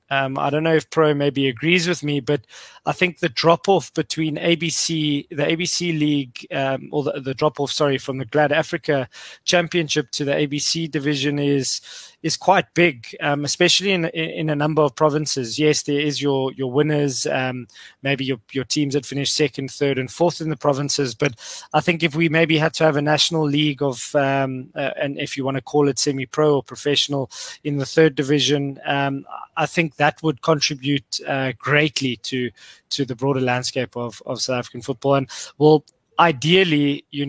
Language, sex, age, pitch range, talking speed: English, male, 20-39, 135-155 Hz, 190 wpm